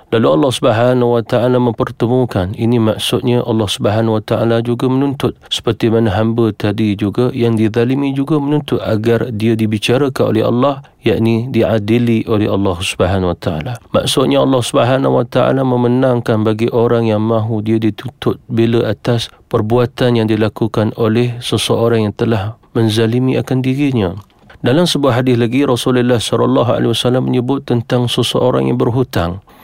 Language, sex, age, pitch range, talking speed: Malay, male, 40-59, 105-125 Hz, 140 wpm